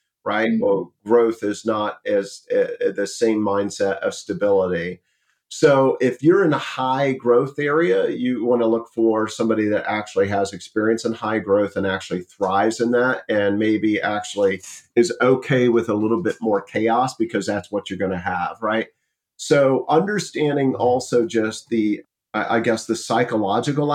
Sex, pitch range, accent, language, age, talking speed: male, 110-140 Hz, American, English, 40-59, 165 wpm